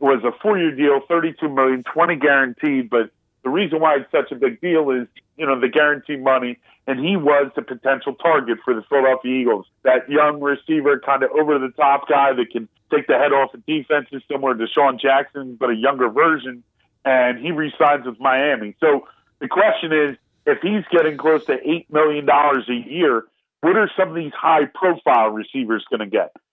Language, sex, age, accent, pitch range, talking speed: English, male, 40-59, American, 135-165 Hz, 195 wpm